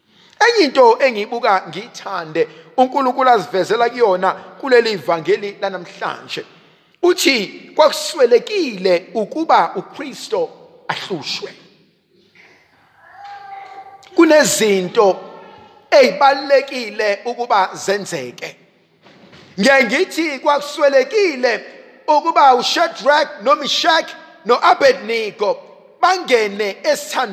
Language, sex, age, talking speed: English, male, 50-69, 70 wpm